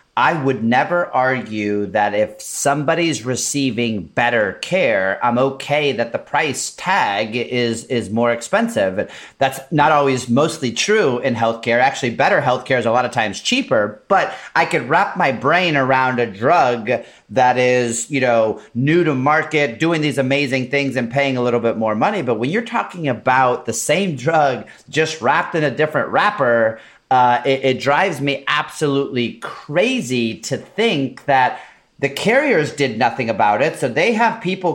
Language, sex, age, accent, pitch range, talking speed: English, male, 30-49, American, 130-175 Hz, 170 wpm